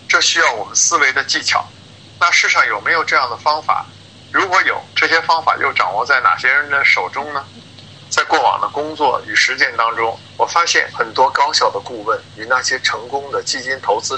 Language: Chinese